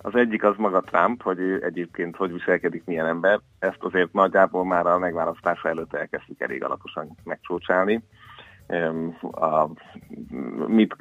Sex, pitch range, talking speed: male, 90-110 Hz, 140 wpm